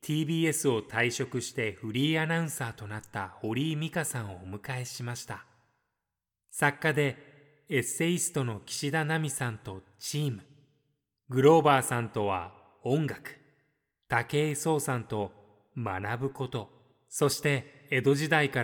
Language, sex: Japanese, male